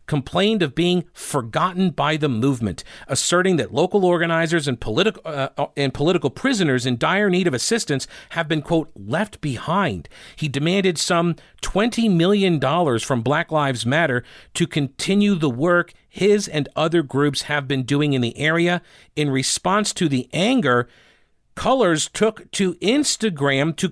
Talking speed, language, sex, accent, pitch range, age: 155 wpm, English, male, American, 145-195 Hz, 50-69